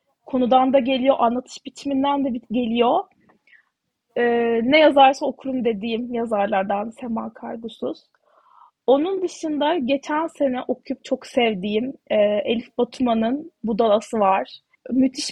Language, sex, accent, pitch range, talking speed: Turkish, female, native, 240-295 Hz, 110 wpm